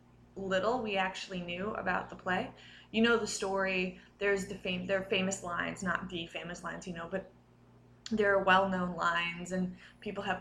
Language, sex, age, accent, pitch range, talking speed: English, female, 20-39, American, 180-200 Hz, 185 wpm